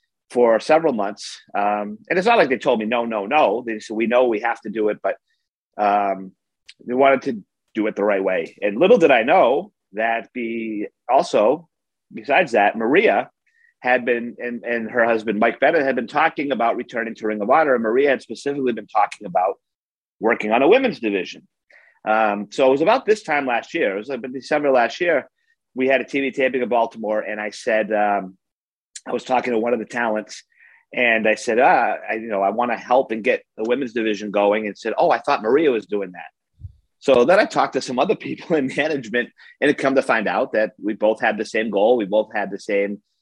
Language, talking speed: English, 225 wpm